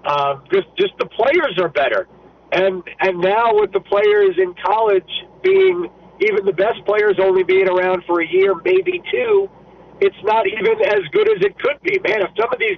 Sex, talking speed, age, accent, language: male, 195 wpm, 50-69, American, English